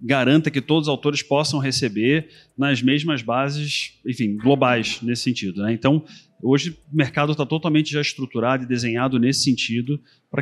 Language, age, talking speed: Portuguese, 30-49, 160 wpm